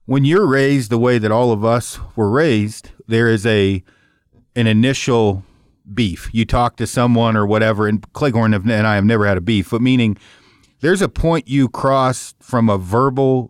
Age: 40-59